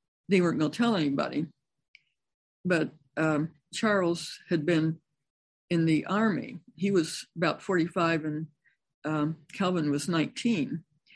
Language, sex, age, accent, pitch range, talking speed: English, female, 60-79, American, 155-185 Hz, 125 wpm